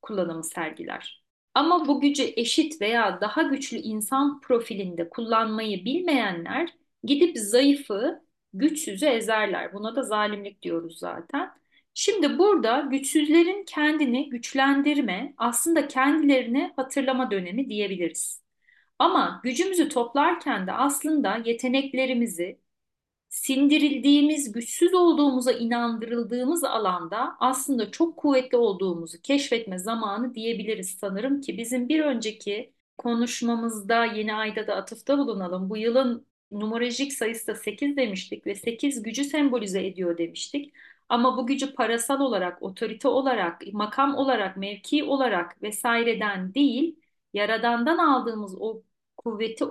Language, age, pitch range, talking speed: Turkish, 40-59, 215-280 Hz, 110 wpm